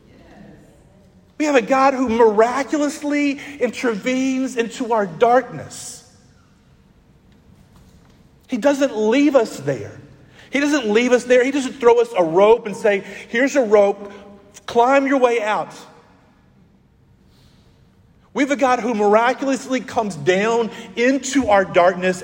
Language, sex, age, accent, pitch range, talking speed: English, male, 40-59, American, 150-235 Hz, 125 wpm